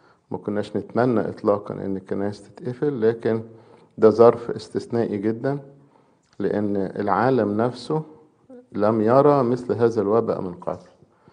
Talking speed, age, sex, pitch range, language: 110 wpm, 50-69, male, 100-120 Hz, English